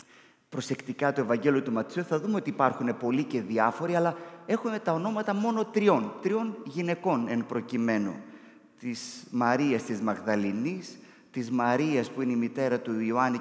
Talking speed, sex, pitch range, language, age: 150 wpm, male, 120-185 Hz, Greek, 30-49